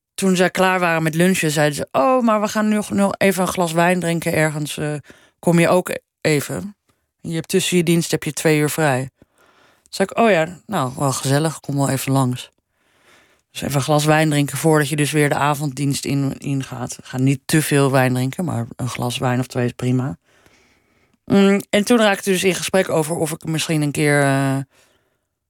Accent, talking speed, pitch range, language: Dutch, 200 wpm, 140-170 Hz, Dutch